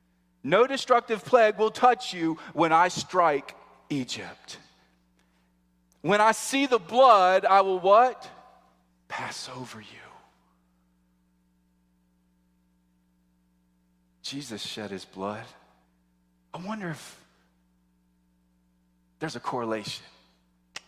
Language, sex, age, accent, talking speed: English, male, 40-59, American, 90 wpm